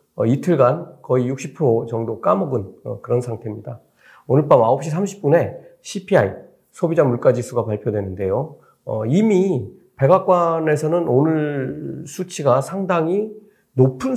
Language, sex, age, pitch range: Korean, male, 40-59, 125-175 Hz